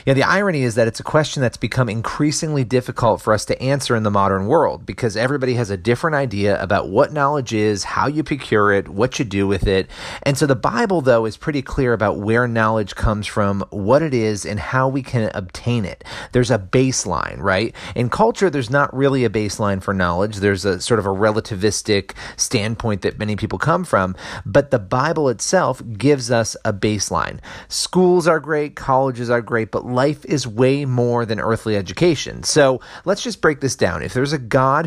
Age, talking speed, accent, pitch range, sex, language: 30-49, 205 wpm, American, 105-140 Hz, male, English